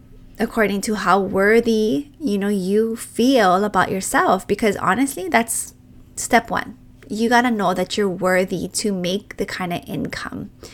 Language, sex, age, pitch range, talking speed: English, female, 20-39, 185-225 Hz, 150 wpm